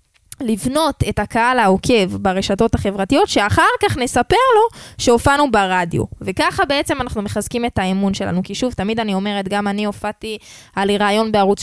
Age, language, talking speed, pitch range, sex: 10-29, Hebrew, 160 wpm, 205-255 Hz, female